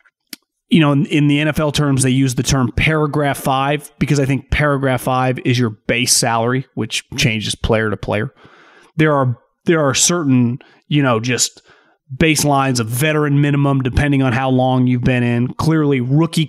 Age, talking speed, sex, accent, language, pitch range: 30-49, 170 wpm, male, American, English, 135-160 Hz